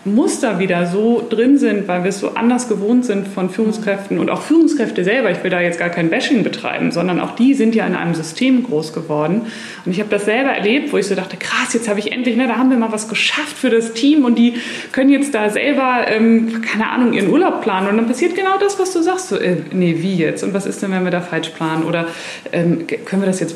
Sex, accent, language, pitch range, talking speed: female, German, German, 190-245 Hz, 255 wpm